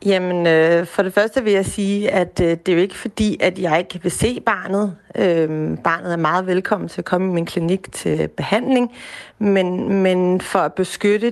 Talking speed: 205 wpm